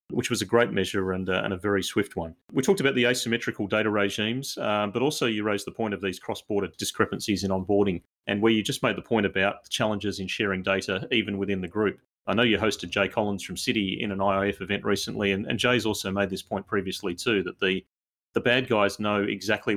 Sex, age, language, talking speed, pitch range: male, 30-49, English, 235 wpm, 95-110 Hz